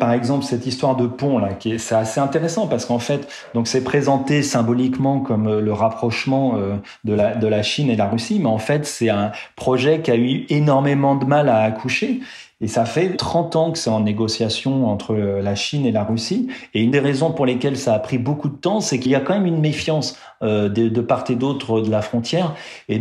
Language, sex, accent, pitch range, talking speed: French, male, French, 115-150 Hz, 230 wpm